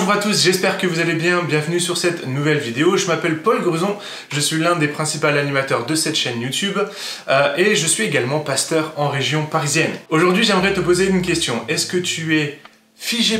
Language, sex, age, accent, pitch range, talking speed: French, male, 20-39, French, 150-190 Hz, 210 wpm